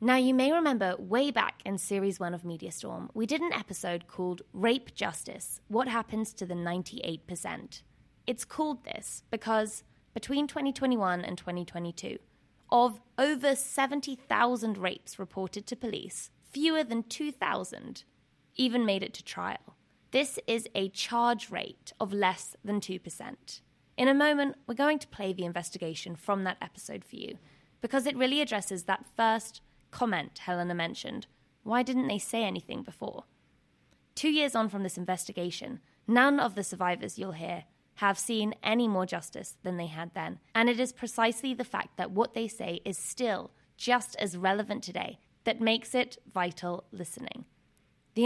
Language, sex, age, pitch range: English, female, 20-39, 185-245 Hz